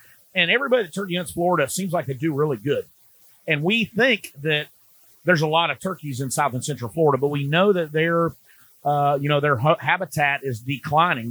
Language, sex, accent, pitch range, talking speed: English, male, American, 145-180 Hz, 185 wpm